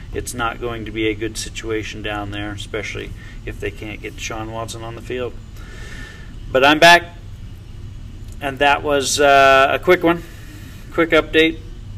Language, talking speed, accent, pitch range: English, 160 wpm, American, 105-140 Hz